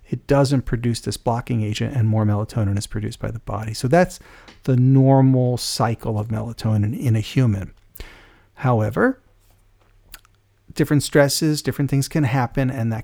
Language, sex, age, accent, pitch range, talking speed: English, male, 40-59, American, 105-135 Hz, 150 wpm